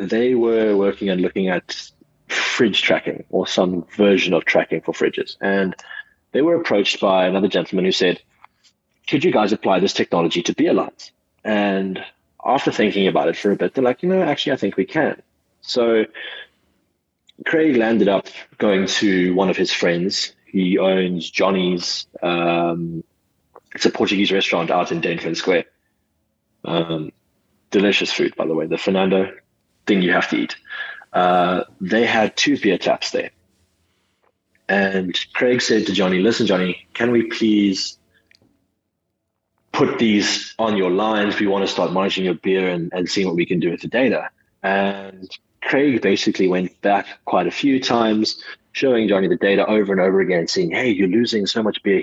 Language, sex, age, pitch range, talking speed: English, male, 30-49, 90-110 Hz, 170 wpm